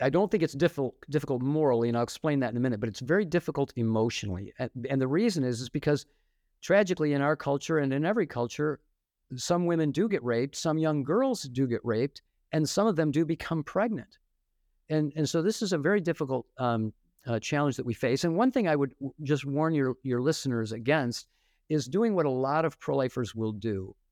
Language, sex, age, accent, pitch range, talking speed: English, male, 50-69, American, 115-150 Hz, 210 wpm